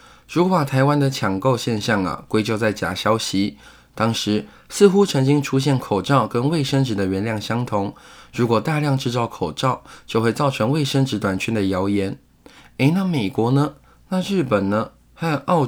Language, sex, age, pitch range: Chinese, male, 20-39, 105-140 Hz